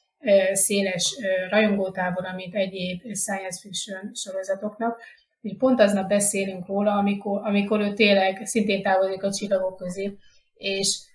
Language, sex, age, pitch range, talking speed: Hungarian, female, 30-49, 190-215 Hz, 115 wpm